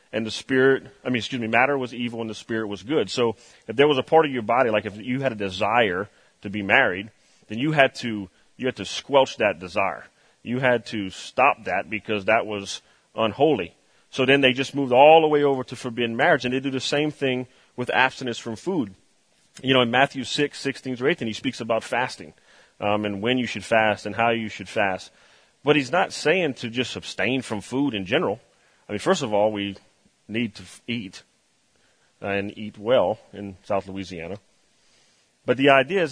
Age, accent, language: 30-49, American, English